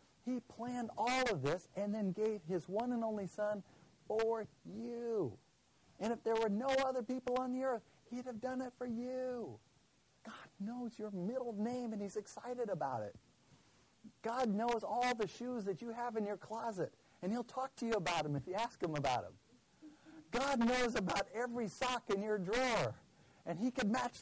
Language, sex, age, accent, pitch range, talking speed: English, male, 50-69, American, 175-245 Hz, 190 wpm